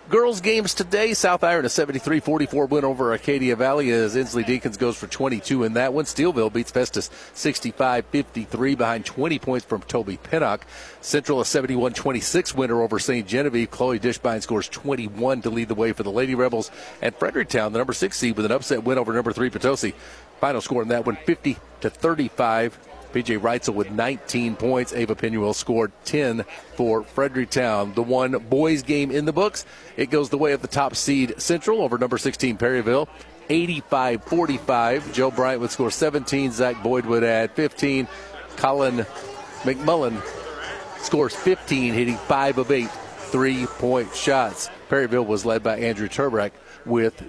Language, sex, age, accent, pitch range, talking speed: English, male, 40-59, American, 115-140 Hz, 160 wpm